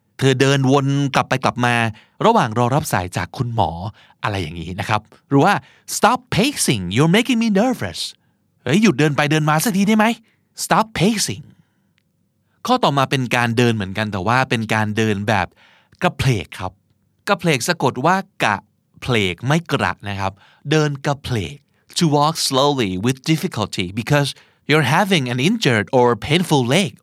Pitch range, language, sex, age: 115-160 Hz, Thai, male, 30-49